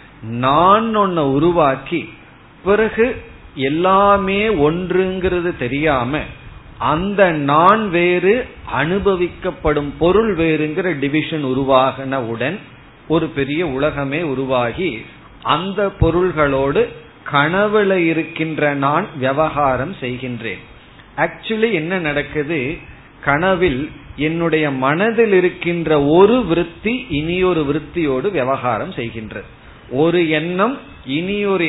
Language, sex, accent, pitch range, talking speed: Tamil, male, native, 135-175 Hz, 75 wpm